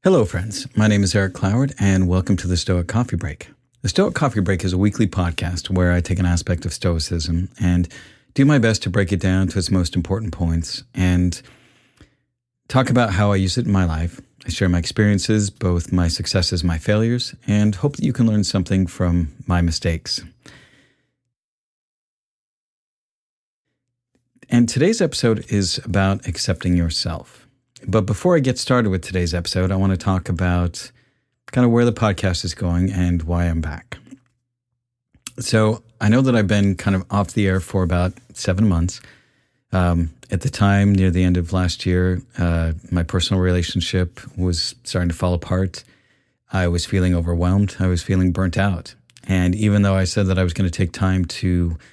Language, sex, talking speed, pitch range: English, male, 185 wpm, 90-120 Hz